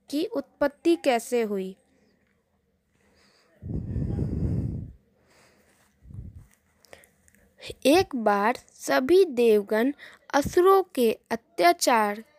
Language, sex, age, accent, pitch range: Telugu, female, 20-39, native, 230-325 Hz